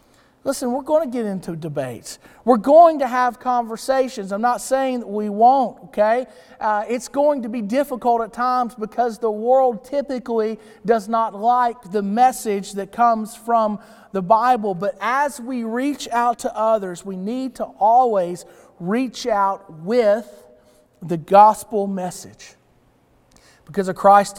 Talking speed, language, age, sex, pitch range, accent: 150 wpm, English, 40-59, male, 180-255 Hz, American